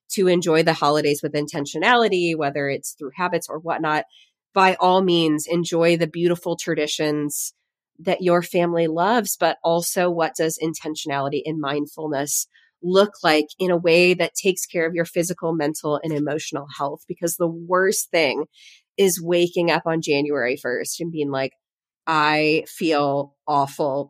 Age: 30-49